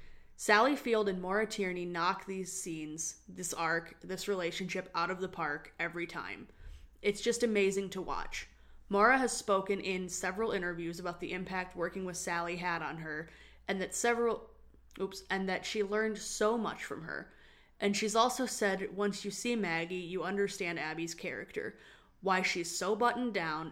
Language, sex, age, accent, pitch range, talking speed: English, female, 20-39, American, 170-210 Hz, 170 wpm